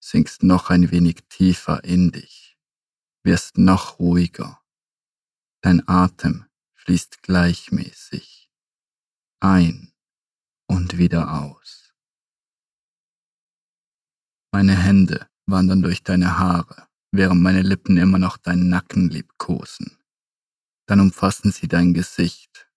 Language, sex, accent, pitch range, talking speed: German, male, German, 85-95 Hz, 100 wpm